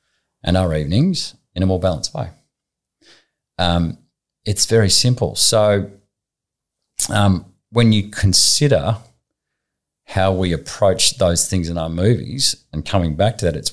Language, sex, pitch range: English, male, 85-100 Hz